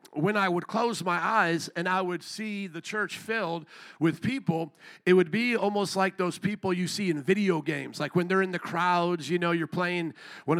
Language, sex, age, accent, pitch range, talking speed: English, male, 50-69, American, 165-205 Hz, 215 wpm